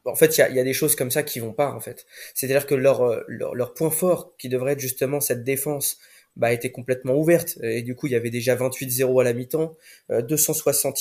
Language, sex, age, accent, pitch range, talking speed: French, male, 20-39, French, 120-150 Hz, 245 wpm